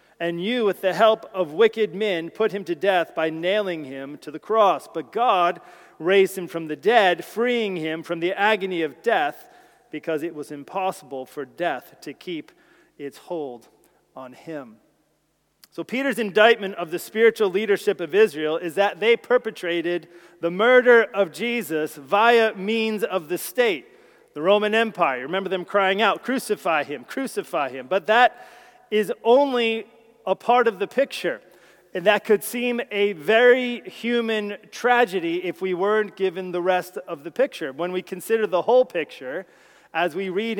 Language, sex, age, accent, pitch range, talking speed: English, male, 40-59, American, 175-230 Hz, 165 wpm